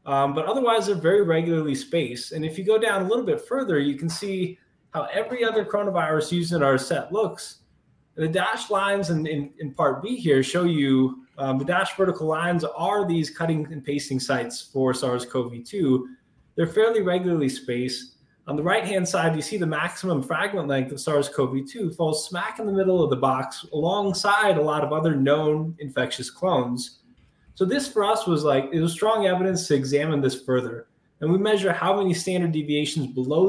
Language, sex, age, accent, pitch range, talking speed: English, male, 20-39, American, 140-185 Hz, 190 wpm